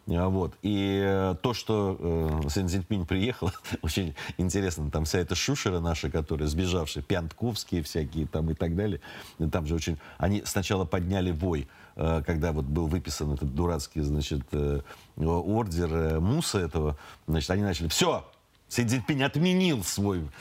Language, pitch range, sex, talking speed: Russian, 85-125 Hz, male, 135 wpm